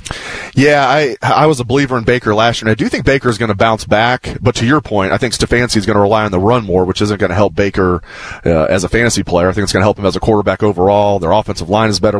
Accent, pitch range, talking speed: American, 95-115 Hz, 305 wpm